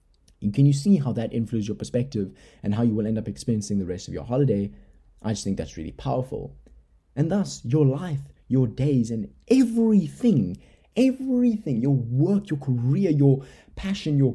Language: English